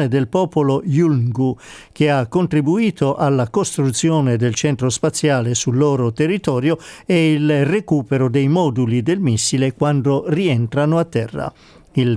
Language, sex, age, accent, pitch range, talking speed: Italian, male, 50-69, native, 130-160 Hz, 130 wpm